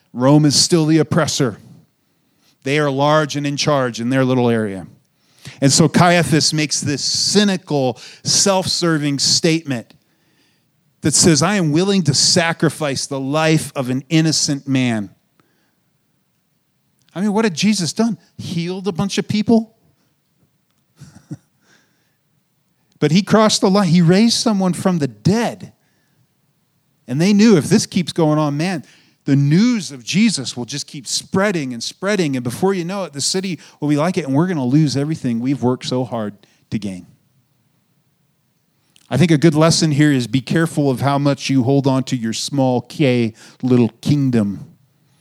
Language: English